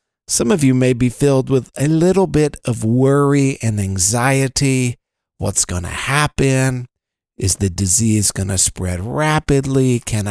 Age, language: 50-69, English